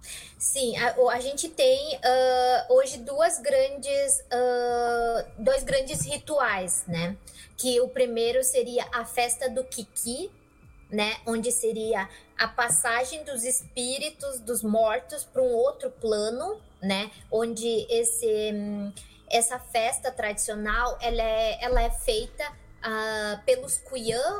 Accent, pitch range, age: Brazilian, 215-265 Hz, 20-39